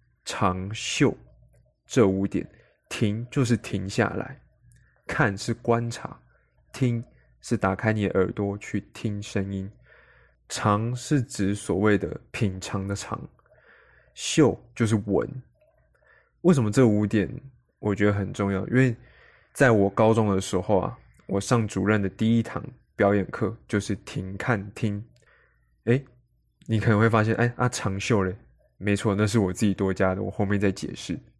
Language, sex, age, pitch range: Chinese, male, 20-39, 100-115 Hz